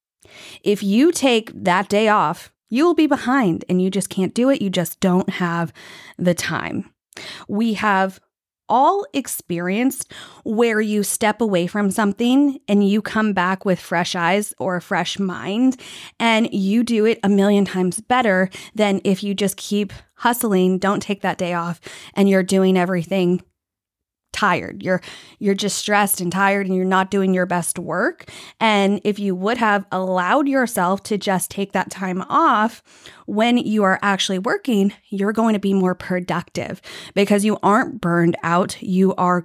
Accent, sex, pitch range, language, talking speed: American, female, 185-220 Hz, English, 170 wpm